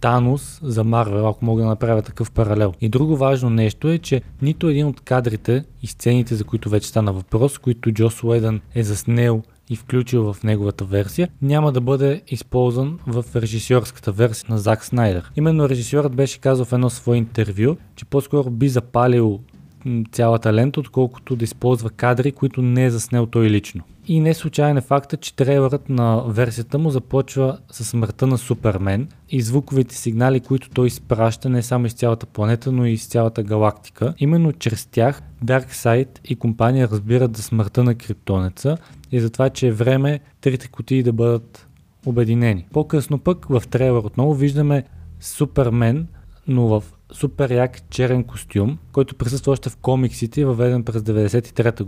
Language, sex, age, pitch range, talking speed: Bulgarian, male, 20-39, 115-135 Hz, 165 wpm